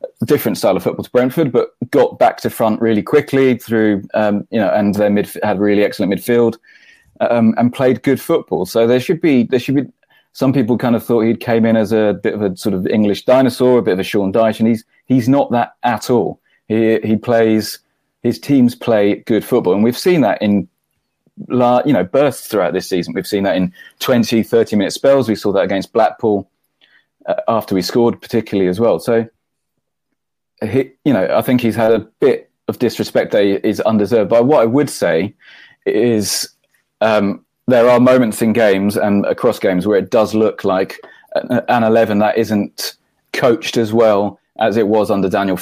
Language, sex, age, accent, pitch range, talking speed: English, male, 30-49, British, 105-125 Hz, 205 wpm